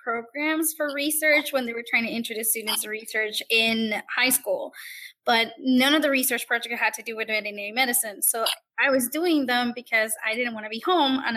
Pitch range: 225-285 Hz